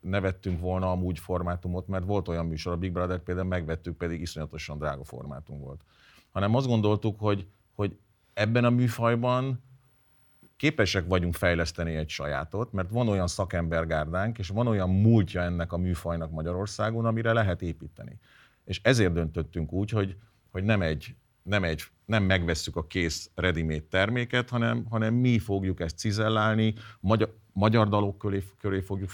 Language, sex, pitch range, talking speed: Hungarian, male, 85-105 Hz, 150 wpm